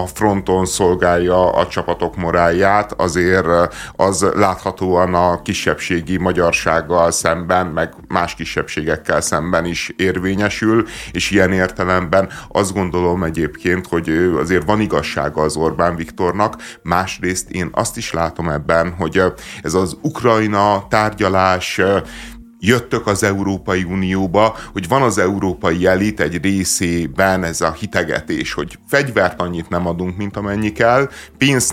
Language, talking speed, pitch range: Hungarian, 125 wpm, 85-100 Hz